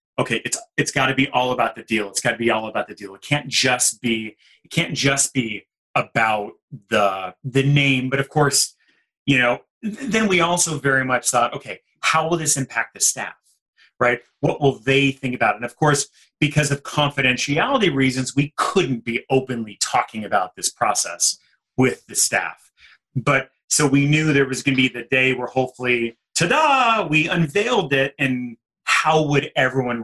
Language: English